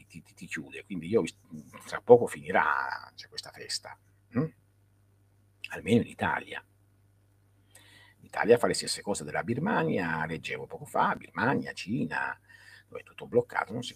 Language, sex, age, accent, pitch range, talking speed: Italian, male, 50-69, native, 100-105 Hz, 145 wpm